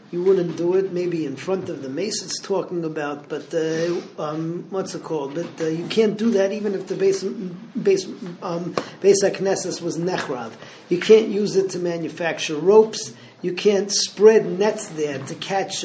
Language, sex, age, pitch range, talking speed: English, male, 40-59, 165-195 Hz, 185 wpm